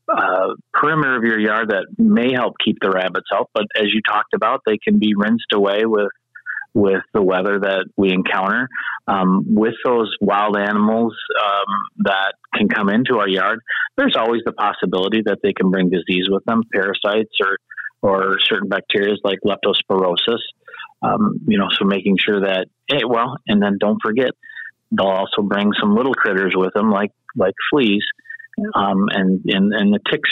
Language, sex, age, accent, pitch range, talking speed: English, male, 30-49, American, 95-115 Hz, 175 wpm